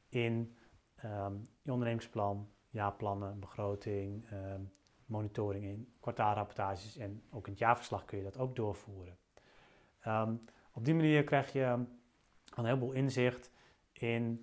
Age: 30-49